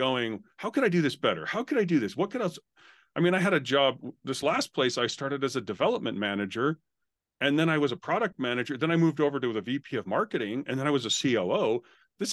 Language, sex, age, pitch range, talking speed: English, male, 40-59, 120-160 Hz, 260 wpm